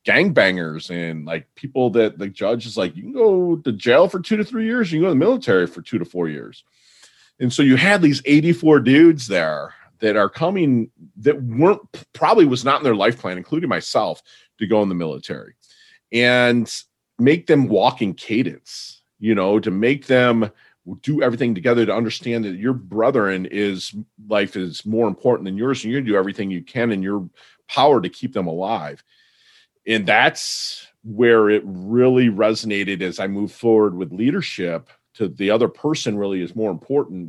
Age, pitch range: 40-59, 95-130 Hz